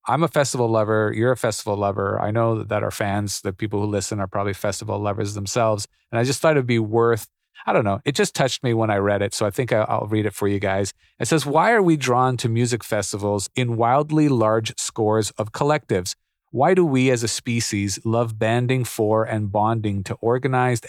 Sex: male